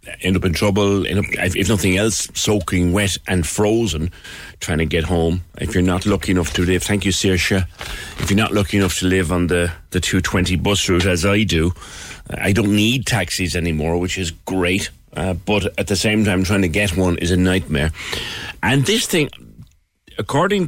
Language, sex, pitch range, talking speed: English, male, 85-110 Hz, 195 wpm